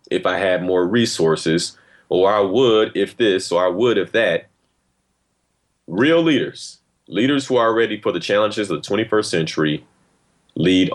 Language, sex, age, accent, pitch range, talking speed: English, male, 30-49, American, 90-130 Hz, 160 wpm